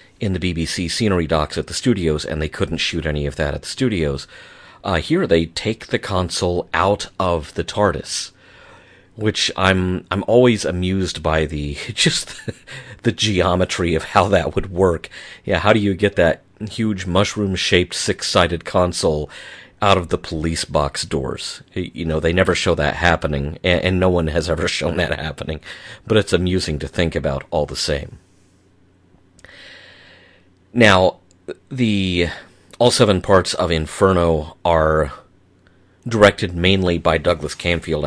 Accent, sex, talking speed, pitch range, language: American, male, 155 wpm, 80-95 Hz, English